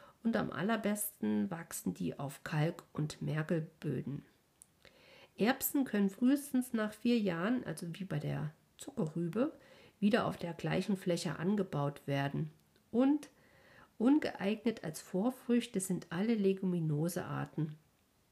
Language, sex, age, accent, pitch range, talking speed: German, female, 50-69, German, 165-225 Hz, 110 wpm